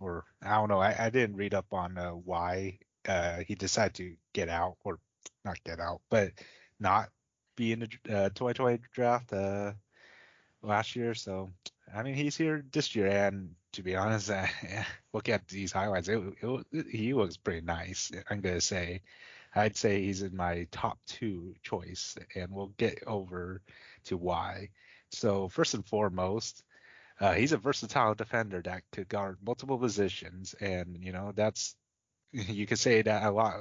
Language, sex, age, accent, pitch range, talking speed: English, male, 30-49, American, 95-115 Hz, 180 wpm